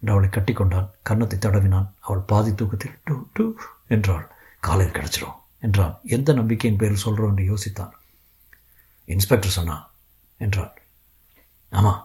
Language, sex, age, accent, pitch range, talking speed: Tamil, male, 60-79, native, 100-155 Hz, 95 wpm